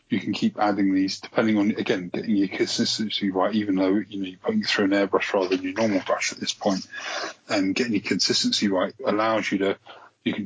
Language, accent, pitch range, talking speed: English, British, 95-105 Hz, 225 wpm